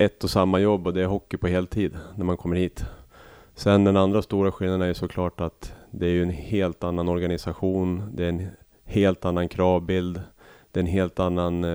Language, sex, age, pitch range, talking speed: Swedish, male, 30-49, 85-100 Hz, 210 wpm